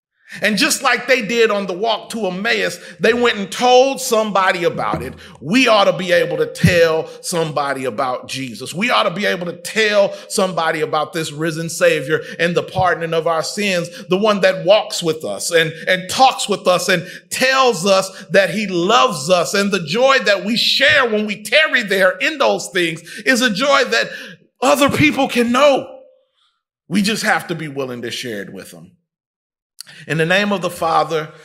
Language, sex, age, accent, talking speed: English, male, 40-59, American, 195 wpm